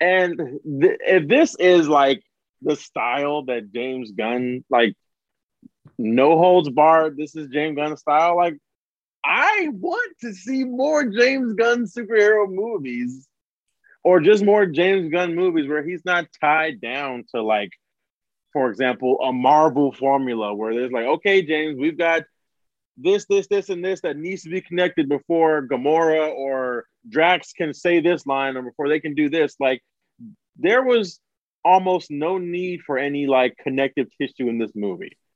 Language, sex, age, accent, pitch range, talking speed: English, male, 20-39, American, 140-180 Hz, 155 wpm